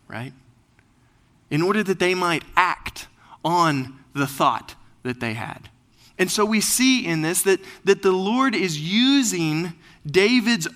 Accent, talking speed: American, 145 wpm